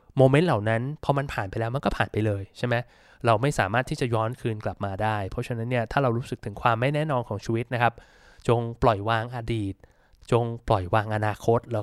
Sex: male